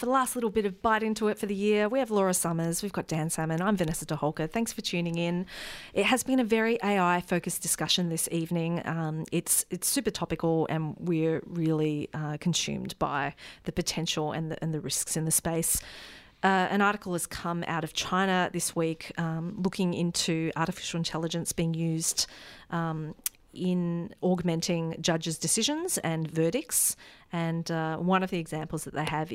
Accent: Australian